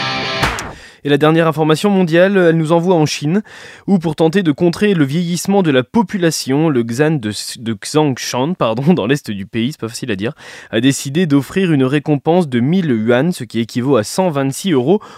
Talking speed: 190 wpm